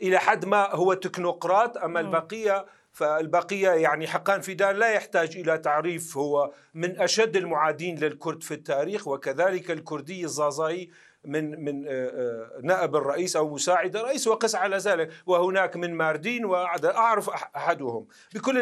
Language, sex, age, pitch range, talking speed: Arabic, male, 50-69, 155-200 Hz, 140 wpm